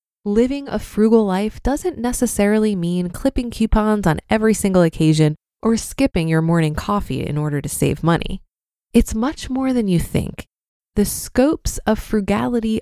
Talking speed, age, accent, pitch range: 155 wpm, 20-39, American, 175-240 Hz